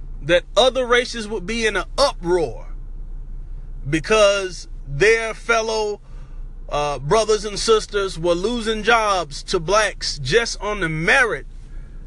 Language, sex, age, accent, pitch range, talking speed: English, male, 30-49, American, 160-225 Hz, 120 wpm